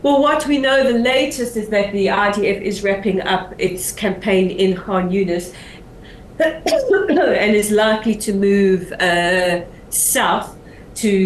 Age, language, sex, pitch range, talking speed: 40-59, English, female, 185-210 Hz, 140 wpm